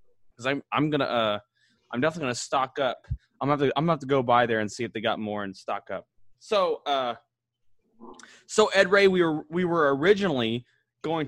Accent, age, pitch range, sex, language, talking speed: American, 20-39, 120-150 Hz, male, English, 200 wpm